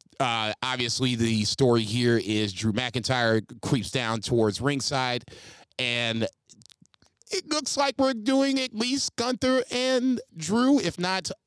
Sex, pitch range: male, 120-145 Hz